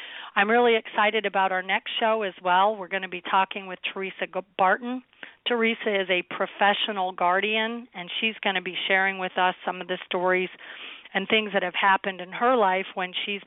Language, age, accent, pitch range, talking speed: English, 40-59, American, 180-210 Hz, 195 wpm